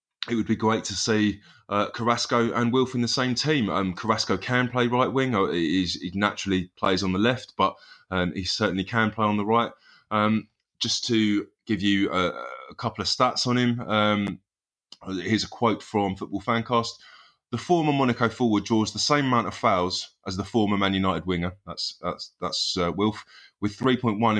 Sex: male